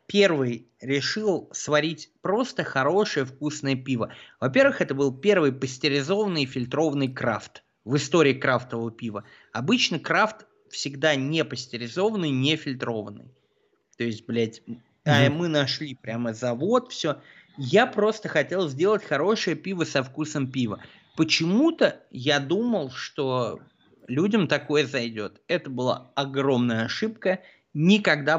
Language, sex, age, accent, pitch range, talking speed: Russian, male, 20-39, native, 130-185 Hz, 120 wpm